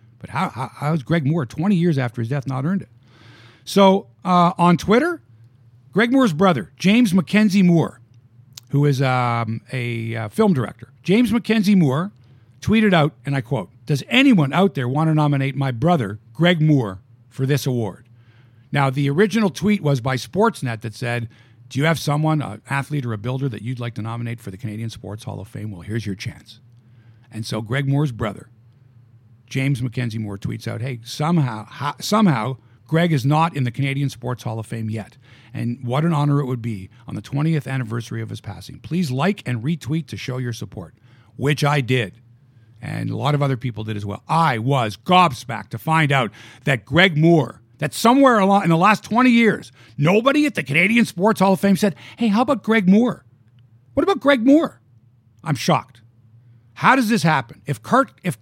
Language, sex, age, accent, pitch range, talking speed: English, male, 50-69, American, 120-170 Hz, 195 wpm